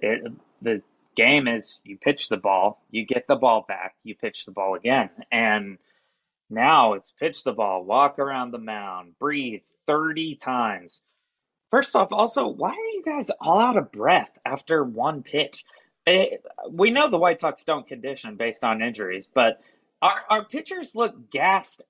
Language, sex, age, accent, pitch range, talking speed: English, male, 30-49, American, 110-175 Hz, 170 wpm